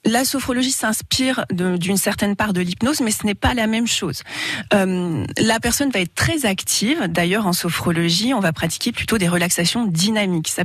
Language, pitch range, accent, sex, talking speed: French, 165-215 Hz, French, female, 190 wpm